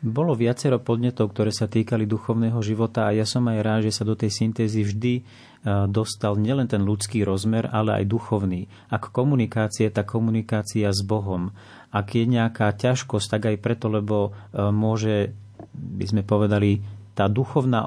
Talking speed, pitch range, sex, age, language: 165 wpm, 105-120 Hz, male, 30-49, Slovak